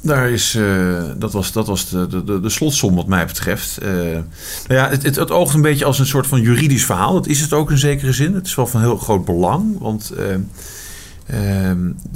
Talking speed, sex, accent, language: 225 wpm, male, Dutch, Dutch